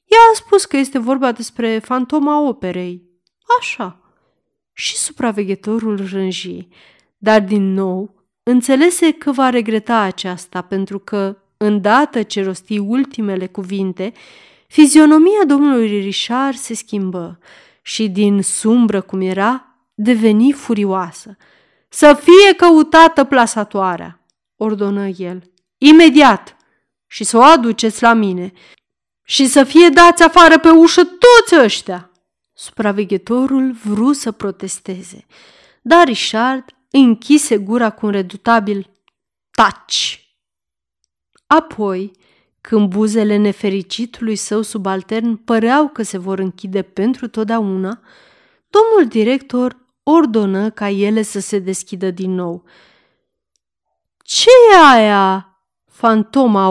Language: Romanian